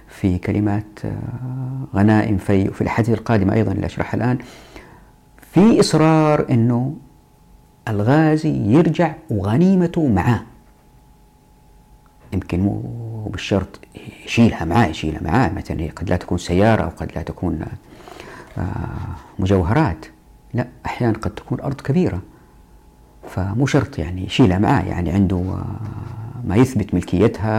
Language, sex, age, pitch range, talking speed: Arabic, female, 50-69, 95-120 Hz, 115 wpm